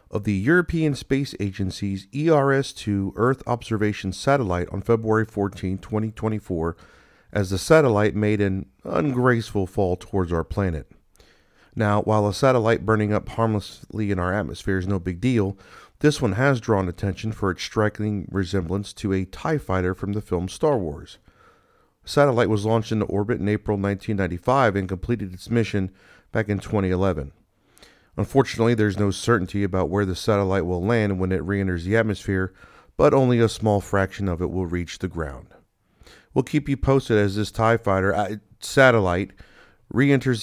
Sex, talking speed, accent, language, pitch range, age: male, 160 wpm, American, English, 95-120 Hz, 40-59